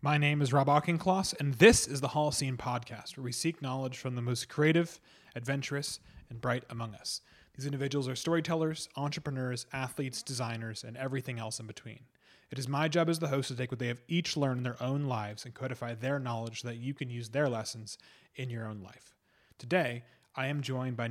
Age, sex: 30-49, male